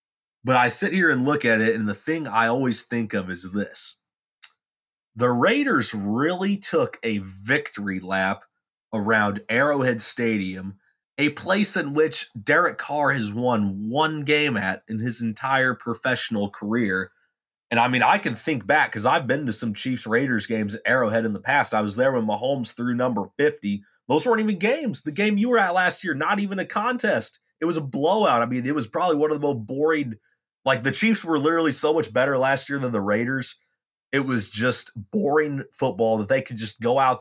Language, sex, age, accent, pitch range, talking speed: English, male, 20-39, American, 115-150 Hz, 200 wpm